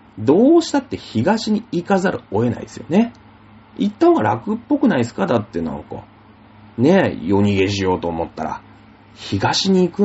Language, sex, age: Japanese, male, 40-59